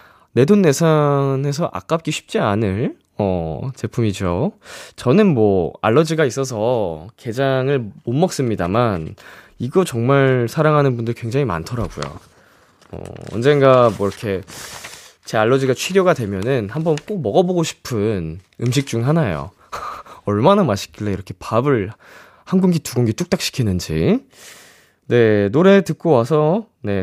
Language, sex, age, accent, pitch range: Korean, male, 20-39, native, 110-160 Hz